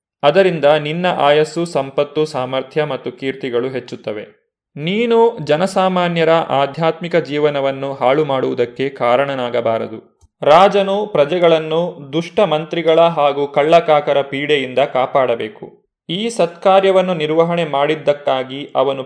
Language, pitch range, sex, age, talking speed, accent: Kannada, 145-175 Hz, male, 30-49, 85 wpm, native